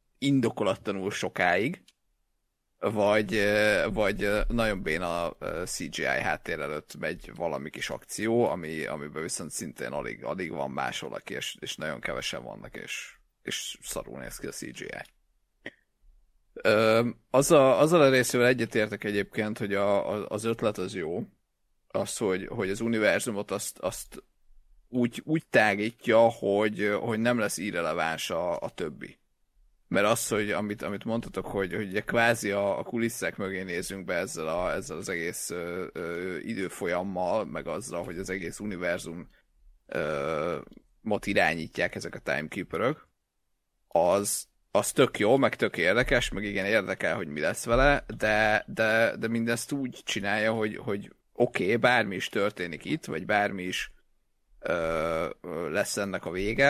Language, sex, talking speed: Hungarian, male, 140 wpm